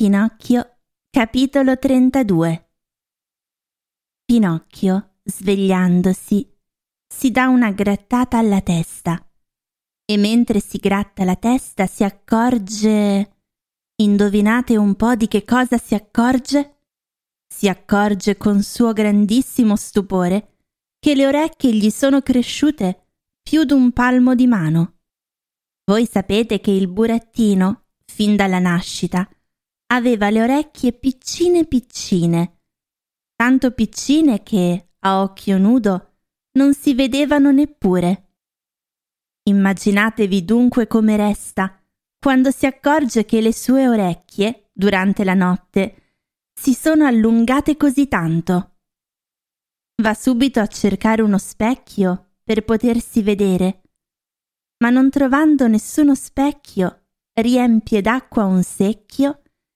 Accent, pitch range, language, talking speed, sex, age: native, 195-255 Hz, Italian, 105 wpm, female, 20-39